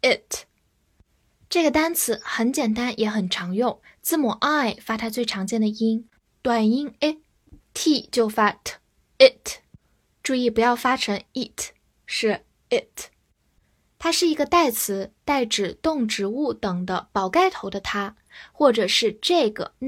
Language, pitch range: Chinese, 210-285 Hz